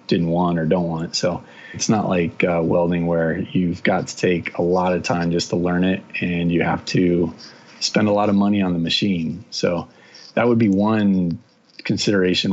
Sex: male